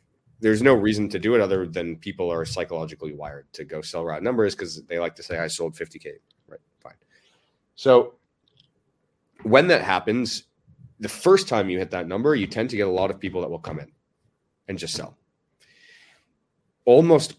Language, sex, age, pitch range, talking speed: English, male, 30-49, 95-125 Hz, 190 wpm